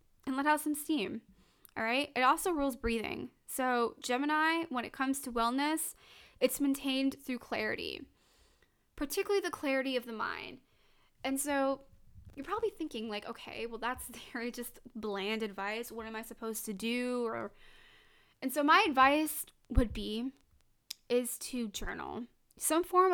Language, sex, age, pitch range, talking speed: English, female, 20-39, 225-270 Hz, 155 wpm